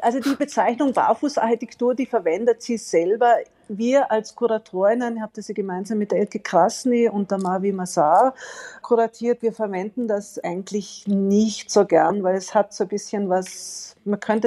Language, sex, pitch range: German, female, 175-220 Hz